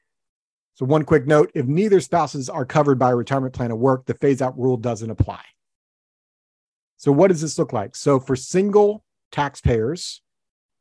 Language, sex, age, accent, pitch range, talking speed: English, male, 40-59, American, 120-150 Hz, 170 wpm